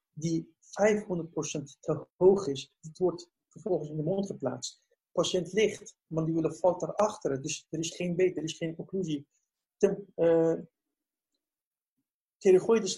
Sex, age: male, 50-69